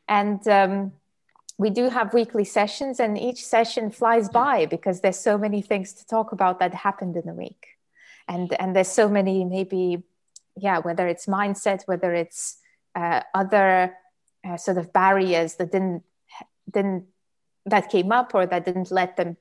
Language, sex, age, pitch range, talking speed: English, female, 20-39, 180-225 Hz, 165 wpm